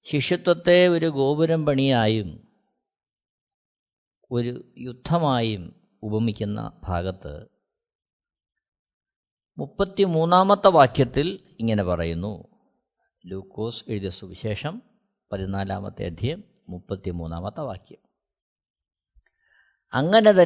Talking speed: 60 wpm